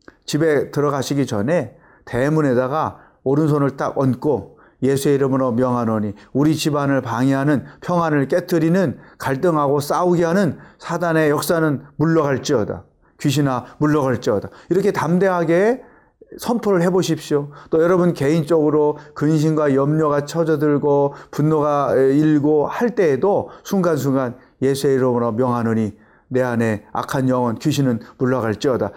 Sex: male